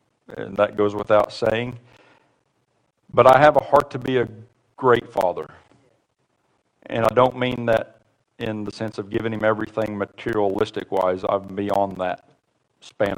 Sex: male